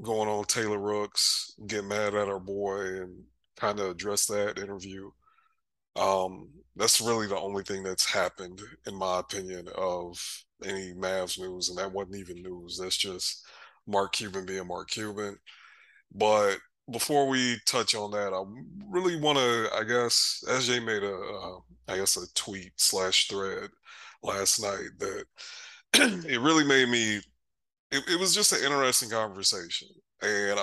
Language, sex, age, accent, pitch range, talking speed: English, male, 20-39, American, 95-115 Hz, 155 wpm